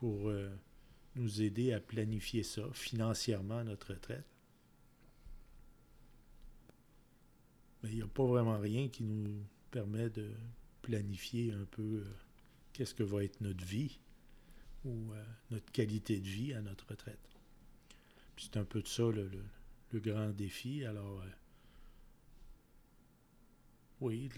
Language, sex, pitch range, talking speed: French, male, 100-115 Hz, 140 wpm